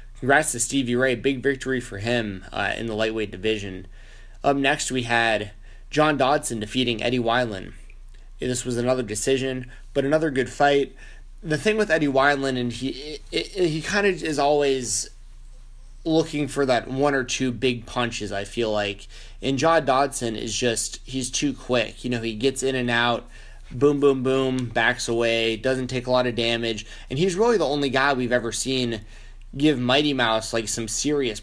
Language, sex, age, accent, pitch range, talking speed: English, male, 20-39, American, 110-135 Hz, 185 wpm